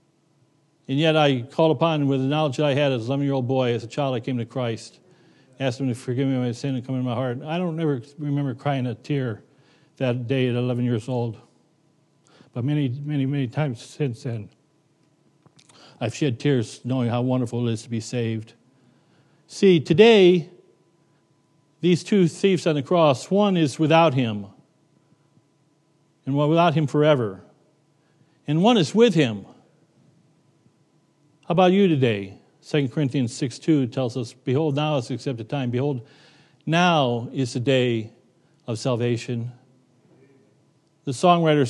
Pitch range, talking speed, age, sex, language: 125-160 Hz, 165 wpm, 60-79, male, English